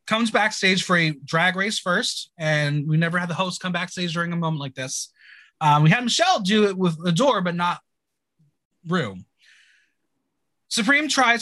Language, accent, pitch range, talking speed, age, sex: English, American, 150-215 Hz, 175 wpm, 20-39, male